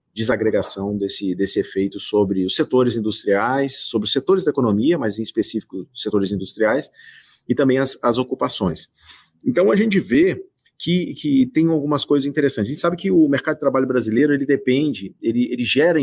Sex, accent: male, Brazilian